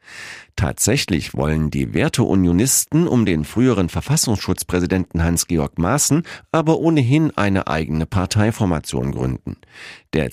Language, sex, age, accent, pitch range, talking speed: German, male, 50-69, German, 85-125 Hz, 100 wpm